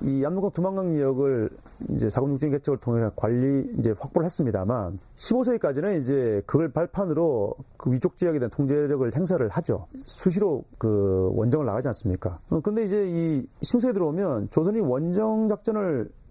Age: 40-59